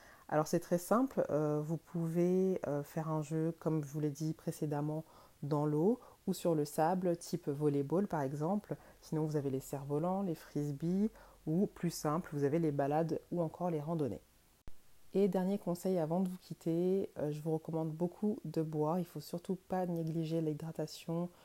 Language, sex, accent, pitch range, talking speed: French, female, French, 150-175 Hz, 185 wpm